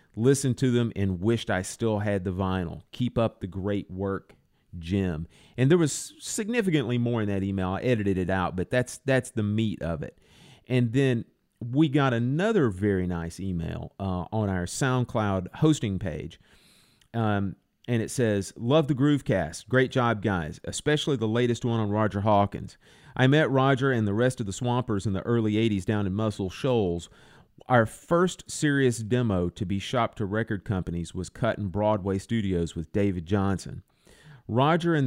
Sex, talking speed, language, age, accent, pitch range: male, 180 wpm, English, 40-59, American, 95-125 Hz